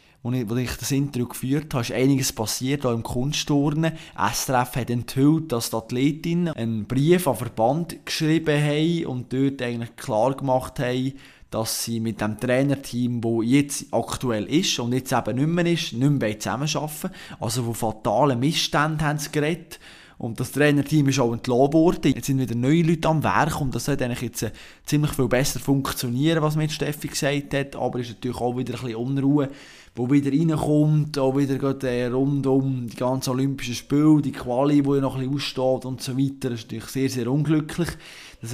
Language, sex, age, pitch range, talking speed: German, male, 20-39, 120-150 Hz, 190 wpm